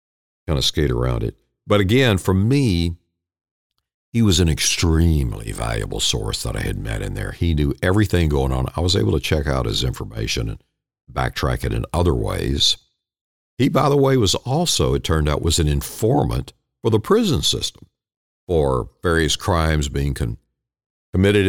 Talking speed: 170 wpm